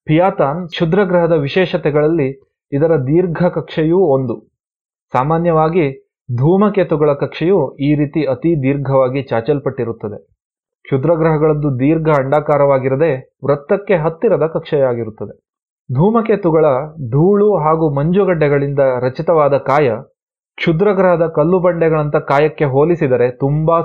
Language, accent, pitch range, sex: Kannada, native, 140-175 Hz, male